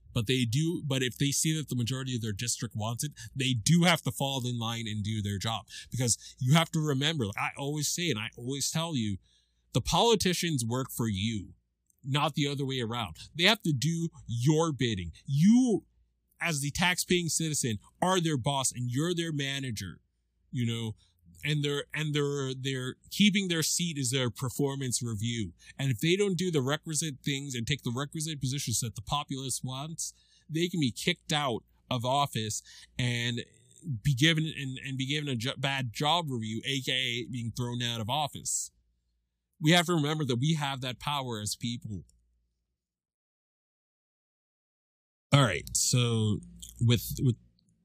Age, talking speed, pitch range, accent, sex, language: 30-49, 175 wpm, 115-150 Hz, American, male, English